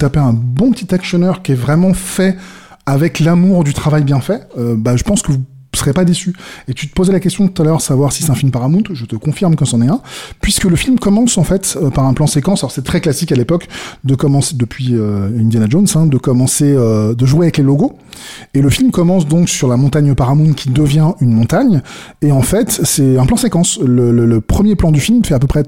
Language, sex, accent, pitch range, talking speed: French, male, French, 130-175 Hz, 250 wpm